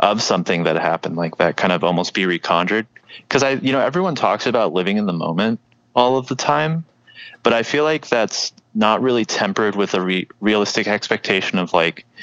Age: 30-49